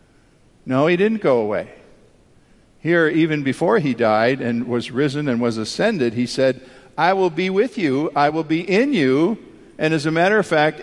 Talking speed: 190 wpm